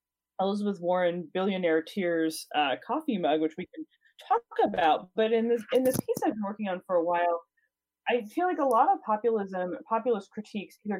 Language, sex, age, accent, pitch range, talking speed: English, female, 20-39, American, 170-250 Hz, 185 wpm